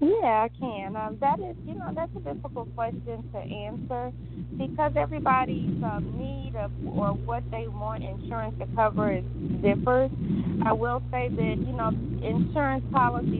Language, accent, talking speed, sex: English, American, 160 wpm, female